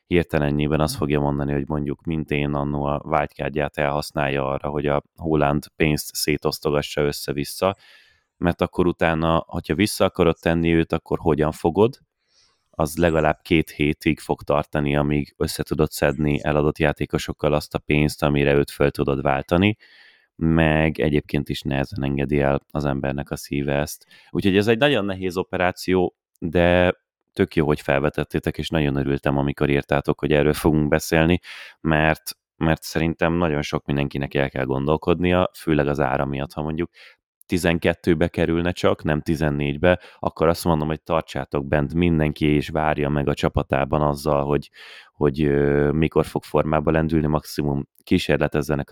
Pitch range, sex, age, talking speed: 70-85 Hz, male, 30-49, 150 wpm